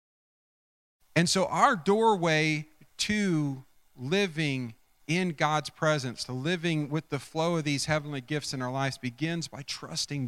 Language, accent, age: English, American, 40-59